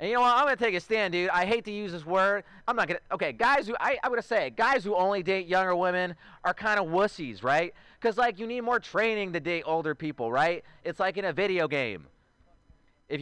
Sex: male